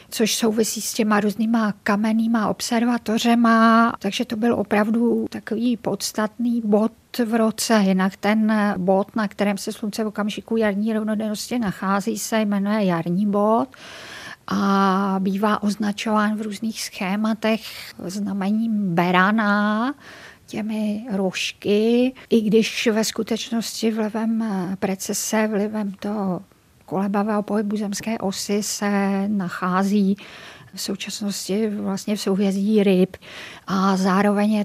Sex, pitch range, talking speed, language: female, 195-220 Hz, 110 wpm, Czech